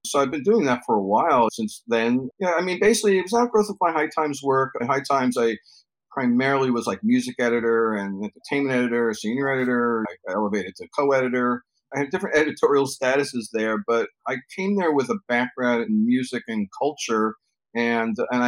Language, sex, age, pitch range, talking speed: English, male, 40-59, 105-130 Hz, 190 wpm